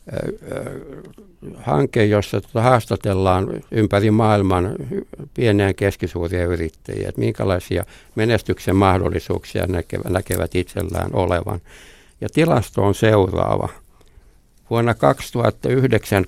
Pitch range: 95-115 Hz